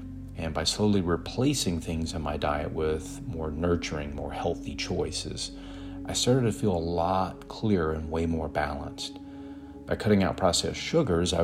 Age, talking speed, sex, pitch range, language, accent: 40-59, 165 wpm, male, 80-95 Hz, English, American